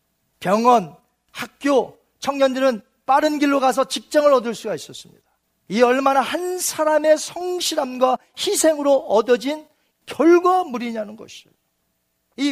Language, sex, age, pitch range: Korean, male, 40-59, 200-305 Hz